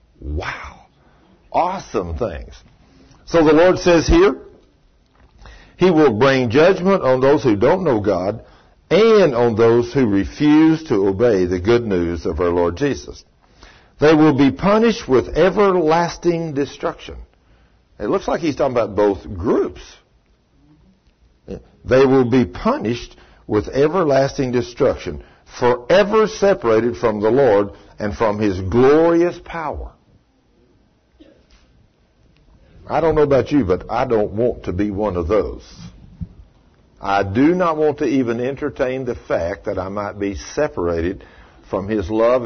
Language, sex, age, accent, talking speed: English, male, 60-79, American, 135 wpm